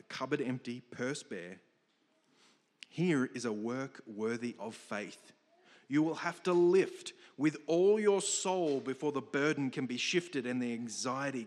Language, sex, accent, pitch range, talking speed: English, male, Australian, 120-155 Hz, 150 wpm